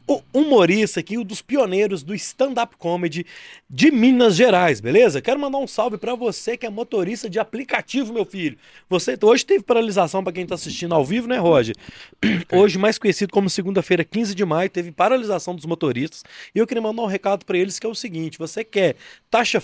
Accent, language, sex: Brazilian, Portuguese, male